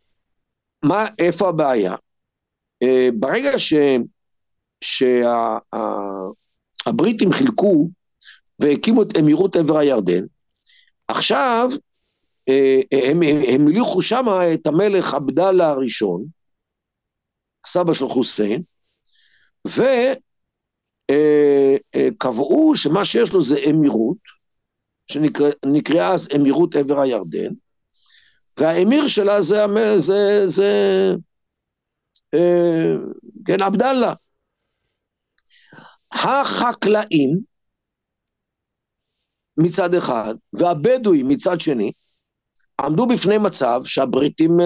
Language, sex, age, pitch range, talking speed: Hebrew, male, 50-69, 140-215 Hz, 75 wpm